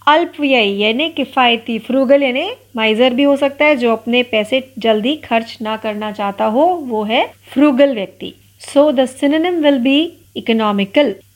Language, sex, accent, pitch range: Marathi, female, native, 210-285 Hz